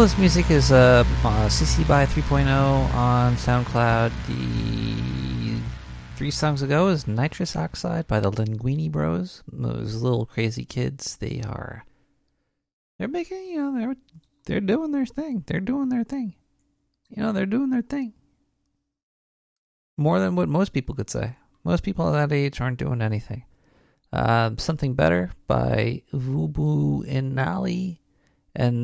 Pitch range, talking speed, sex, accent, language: 115-165 Hz, 145 wpm, male, American, English